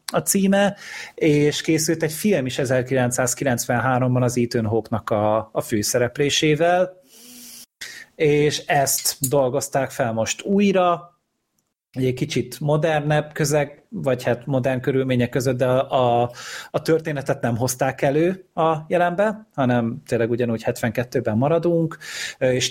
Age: 30-49